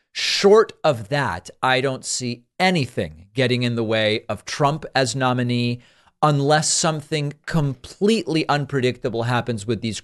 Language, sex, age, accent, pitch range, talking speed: English, male, 40-59, American, 115-145 Hz, 130 wpm